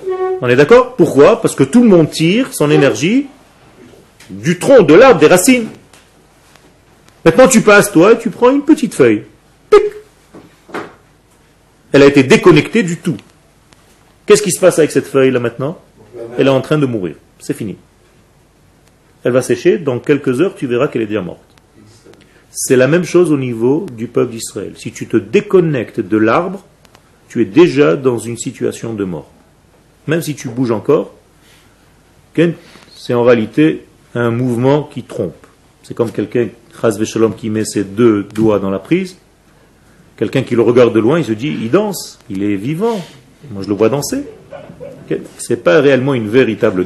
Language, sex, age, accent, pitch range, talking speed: French, male, 40-59, French, 120-175 Hz, 175 wpm